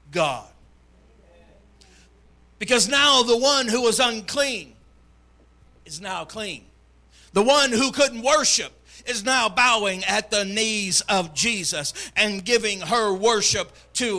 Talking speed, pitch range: 125 wpm, 170-245 Hz